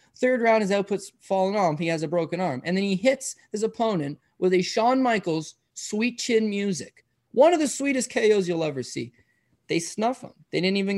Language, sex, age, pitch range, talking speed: English, male, 20-39, 150-200 Hz, 210 wpm